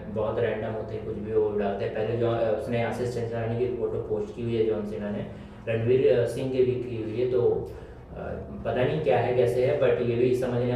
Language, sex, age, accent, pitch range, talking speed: Hindi, male, 20-39, native, 110-125 Hz, 165 wpm